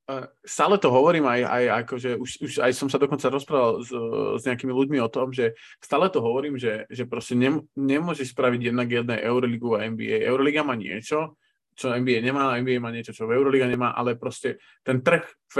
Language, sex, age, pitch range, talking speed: Slovak, male, 20-39, 125-145 Hz, 210 wpm